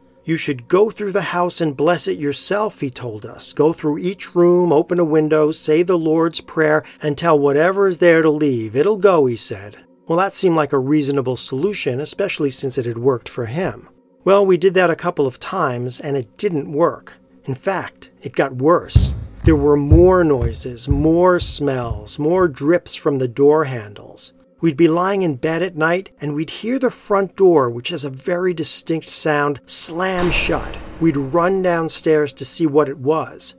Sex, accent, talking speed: male, American, 190 wpm